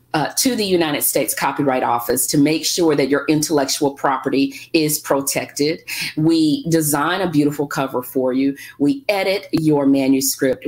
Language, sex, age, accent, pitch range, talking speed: English, female, 40-59, American, 140-205 Hz, 150 wpm